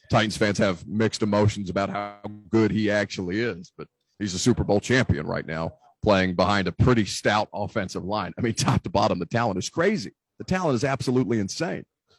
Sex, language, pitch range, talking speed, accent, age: male, English, 105-135 Hz, 195 wpm, American, 40-59